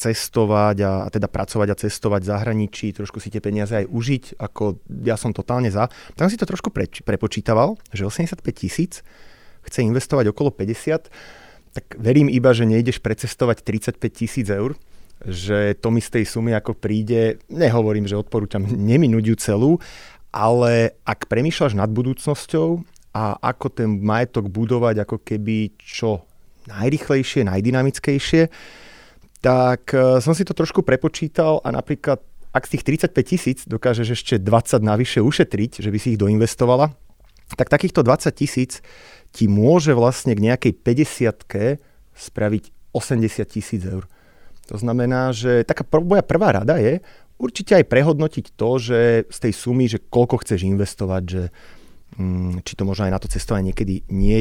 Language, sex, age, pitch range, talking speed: Slovak, male, 30-49, 105-130 Hz, 155 wpm